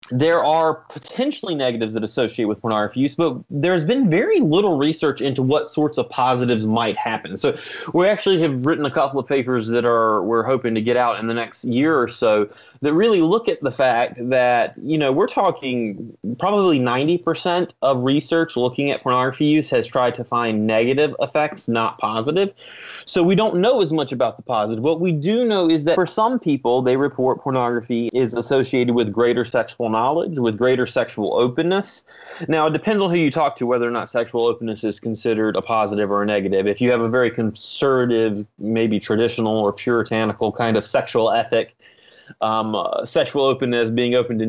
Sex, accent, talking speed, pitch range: male, American, 195 wpm, 110-150 Hz